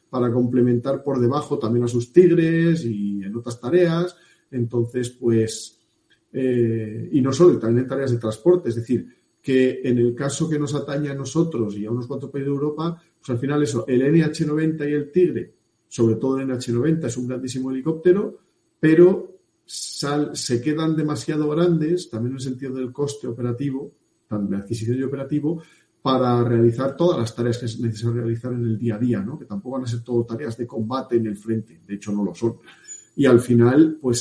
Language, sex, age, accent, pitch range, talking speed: Spanish, male, 40-59, Spanish, 120-150 Hz, 195 wpm